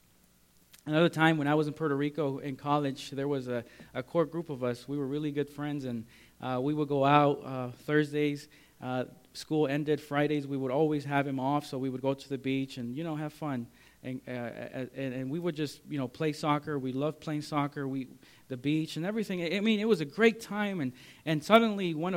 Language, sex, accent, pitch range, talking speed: English, male, American, 130-165 Hz, 230 wpm